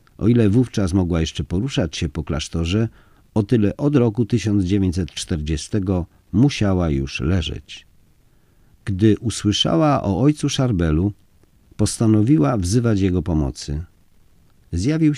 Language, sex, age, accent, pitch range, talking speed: Polish, male, 50-69, native, 85-120 Hz, 105 wpm